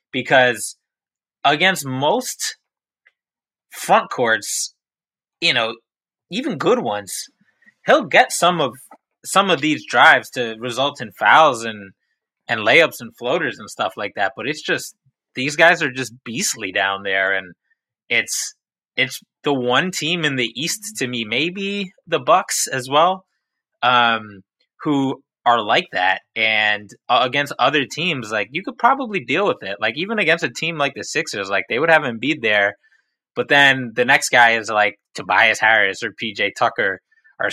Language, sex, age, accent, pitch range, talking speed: English, male, 20-39, American, 110-160 Hz, 165 wpm